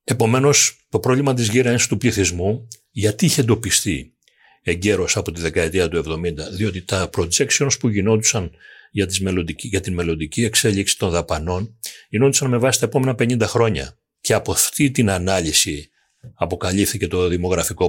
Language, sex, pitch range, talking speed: Greek, male, 90-115 Hz, 150 wpm